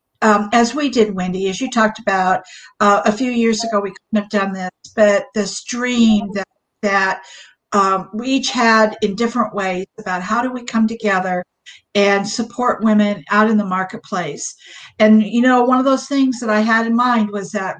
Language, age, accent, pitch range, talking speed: English, 60-79, American, 200-240 Hz, 195 wpm